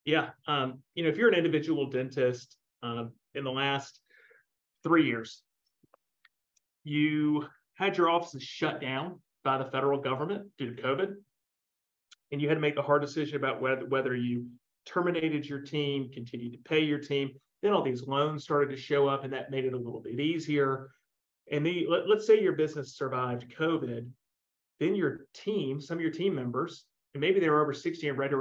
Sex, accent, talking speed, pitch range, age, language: male, American, 190 wpm, 130-155 Hz, 40-59, English